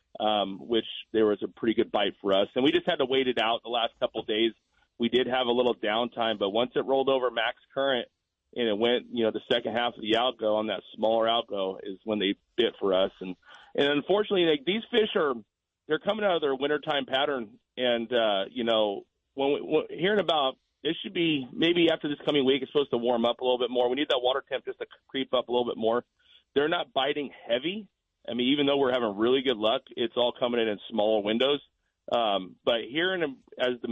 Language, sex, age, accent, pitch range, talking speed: English, male, 40-59, American, 110-135 Hz, 240 wpm